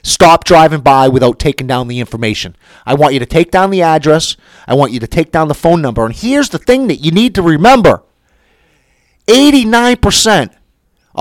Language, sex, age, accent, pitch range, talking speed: English, male, 30-49, American, 125-170 Hz, 185 wpm